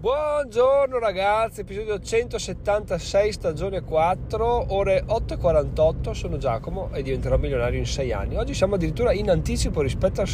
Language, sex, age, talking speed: Italian, male, 30-49, 135 wpm